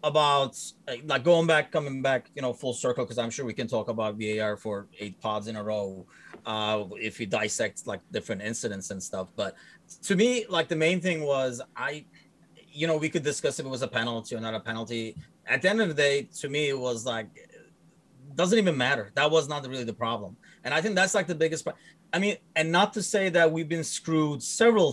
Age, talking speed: 30-49, 230 wpm